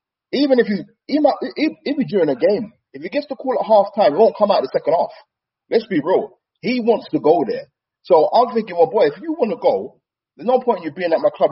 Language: English